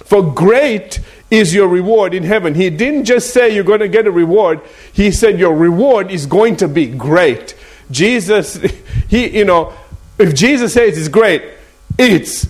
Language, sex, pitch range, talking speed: English, male, 155-215 Hz, 175 wpm